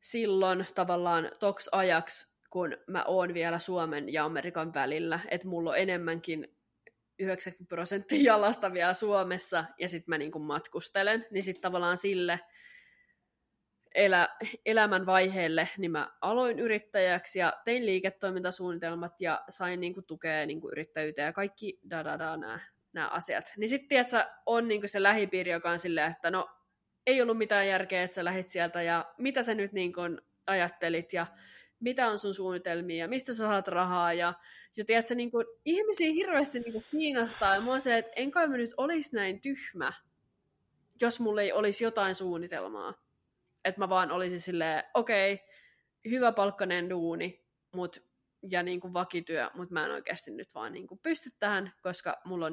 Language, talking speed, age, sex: Finnish, 150 wpm, 20-39, female